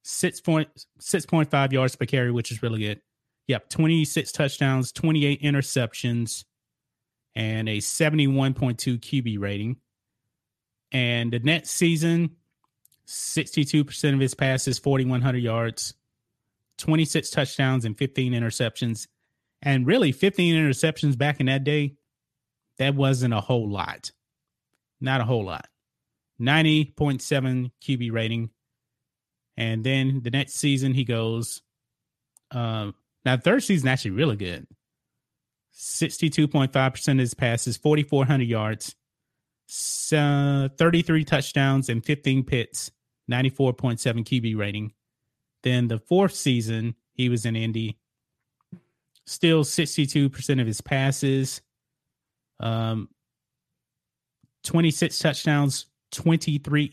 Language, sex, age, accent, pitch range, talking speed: English, male, 30-49, American, 120-145 Hz, 110 wpm